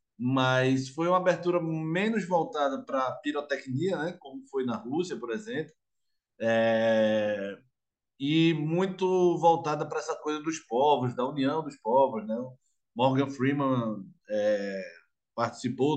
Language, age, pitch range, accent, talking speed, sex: Portuguese, 20-39, 125-160 Hz, Brazilian, 130 wpm, male